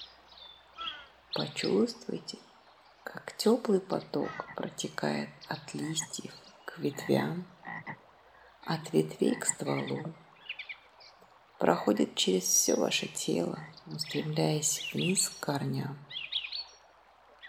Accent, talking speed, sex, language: native, 75 wpm, female, Russian